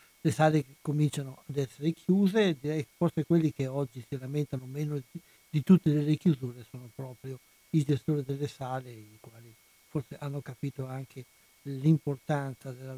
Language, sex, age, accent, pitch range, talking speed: Italian, male, 60-79, native, 140-170 Hz, 150 wpm